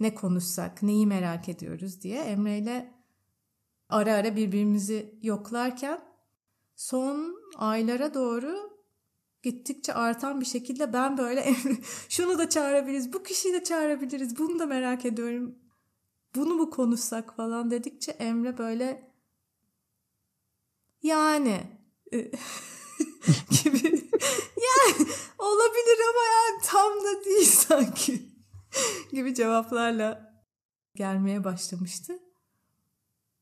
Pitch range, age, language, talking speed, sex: 200-275 Hz, 30-49, Turkish, 100 wpm, female